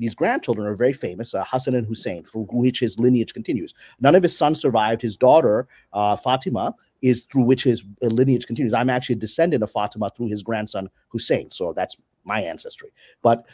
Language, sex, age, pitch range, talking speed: English, male, 30-49, 115-160 Hz, 195 wpm